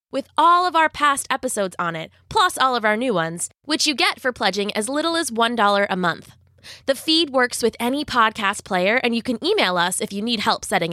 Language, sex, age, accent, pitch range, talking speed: English, female, 20-39, American, 190-270 Hz, 230 wpm